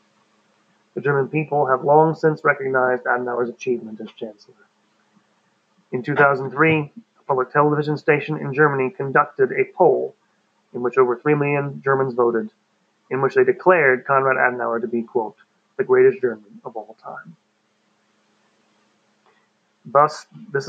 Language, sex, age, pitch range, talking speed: English, male, 30-49, 120-150 Hz, 135 wpm